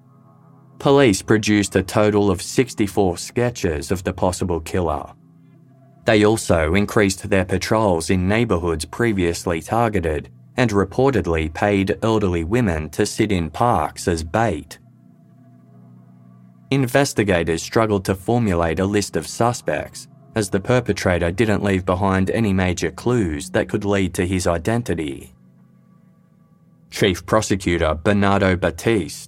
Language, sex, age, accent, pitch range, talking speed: English, male, 20-39, Australian, 90-115 Hz, 120 wpm